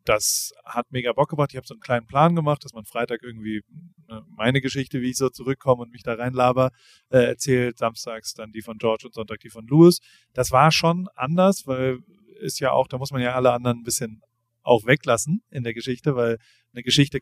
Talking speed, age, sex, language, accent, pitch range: 215 wpm, 30-49, male, German, German, 120-150 Hz